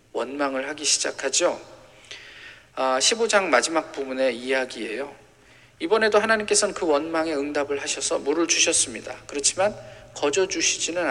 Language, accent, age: Korean, native, 40-59